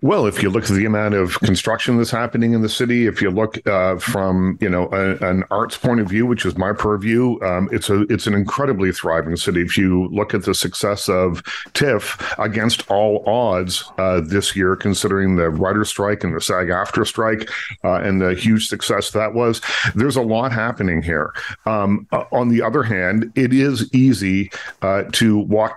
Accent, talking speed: American, 200 wpm